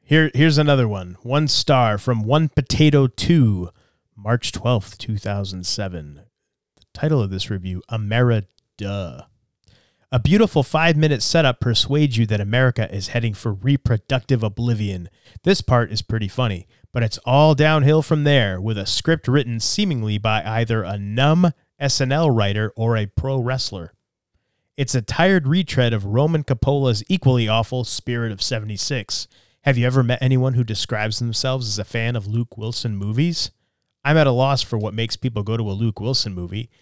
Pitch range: 105-140 Hz